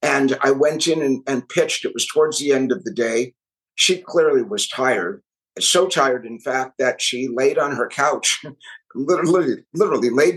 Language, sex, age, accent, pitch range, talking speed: English, male, 50-69, American, 135-185 Hz, 185 wpm